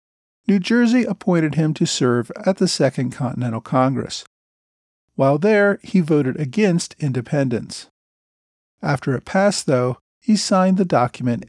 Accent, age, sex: American, 50-69, male